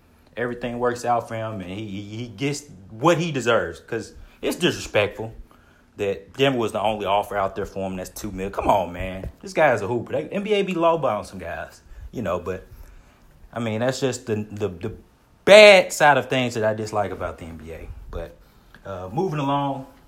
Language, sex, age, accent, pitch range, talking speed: English, male, 30-49, American, 95-145 Hz, 205 wpm